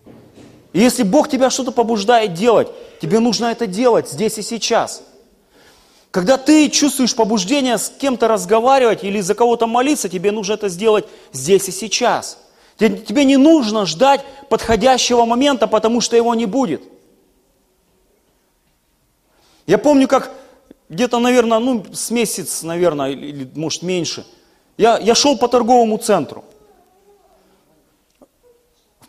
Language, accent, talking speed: Russian, native, 130 wpm